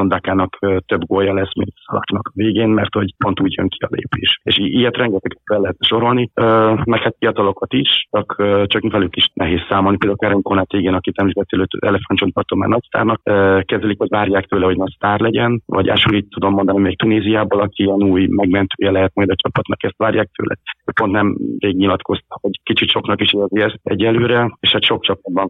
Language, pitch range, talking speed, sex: Hungarian, 95-105 Hz, 185 wpm, male